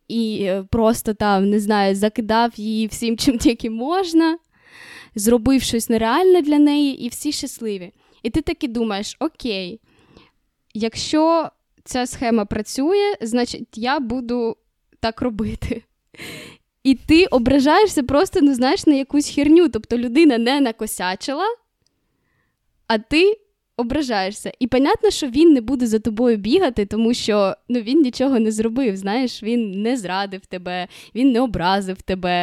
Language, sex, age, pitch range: Ukrainian, female, 20-39, 220-285 Hz